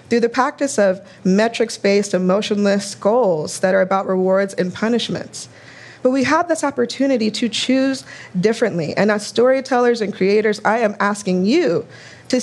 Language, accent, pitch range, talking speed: English, American, 190-250 Hz, 150 wpm